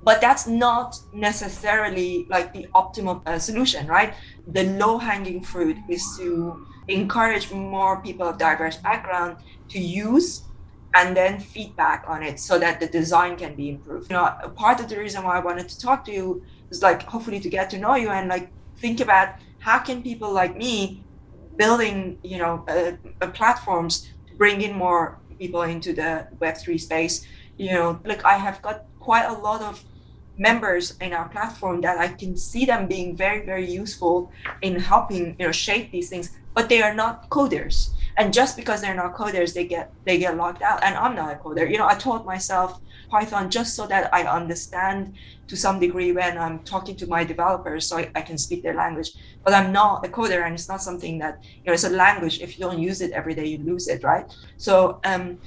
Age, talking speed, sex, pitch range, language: 20-39, 200 wpm, female, 175-210 Hz, English